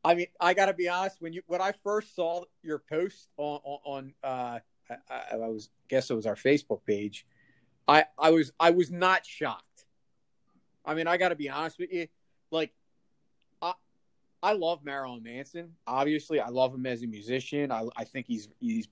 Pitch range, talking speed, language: 120-155 Hz, 190 wpm, English